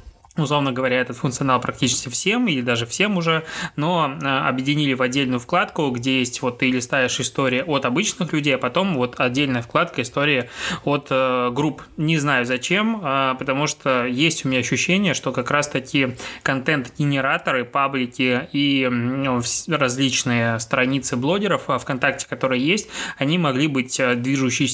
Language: Russian